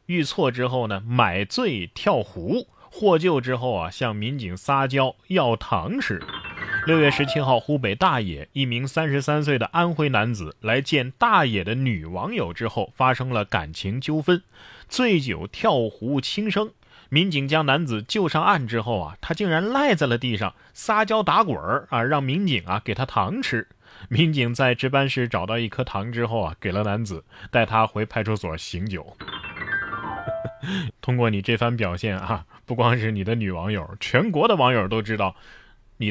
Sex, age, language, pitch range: male, 20-39, Chinese, 105-145 Hz